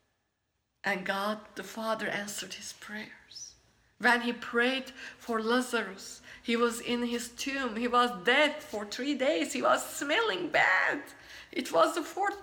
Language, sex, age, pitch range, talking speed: English, female, 50-69, 235-320 Hz, 150 wpm